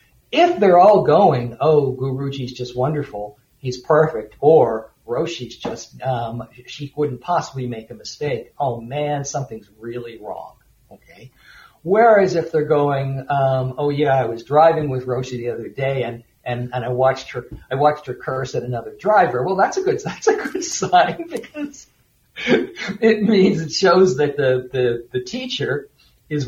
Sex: male